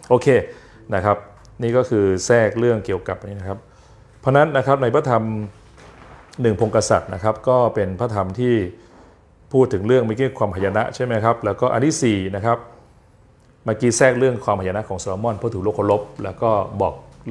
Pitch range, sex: 95-120 Hz, male